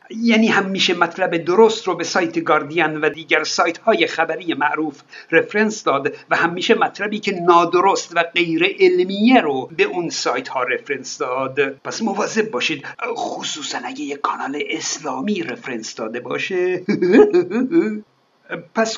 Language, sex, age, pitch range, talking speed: Persian, male, 50-69, 165-240 Hz, 135 wpm